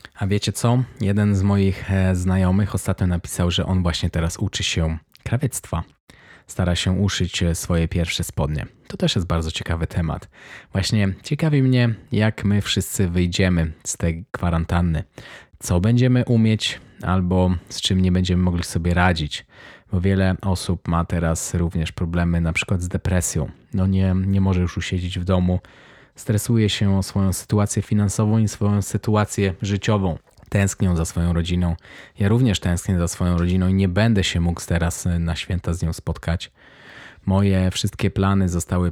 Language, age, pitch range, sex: Polish, 20-39, 85-100 Hz, male